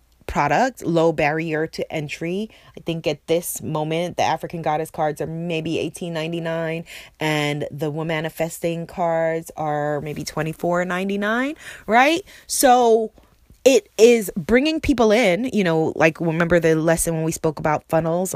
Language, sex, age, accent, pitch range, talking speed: English, female, 20-39, American, 155-205 Hz, 135 wpm